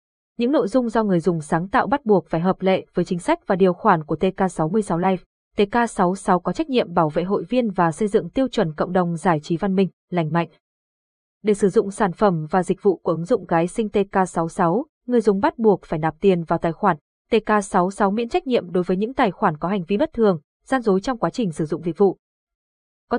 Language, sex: Vietnamese, female